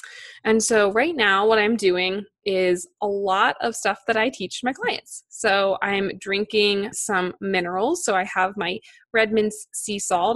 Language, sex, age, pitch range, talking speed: English, female, 20-39, 195-230 Hz, 170 wpm